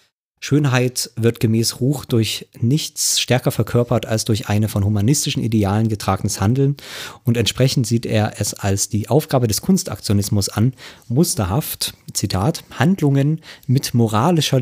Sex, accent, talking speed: male, German, 130 wpm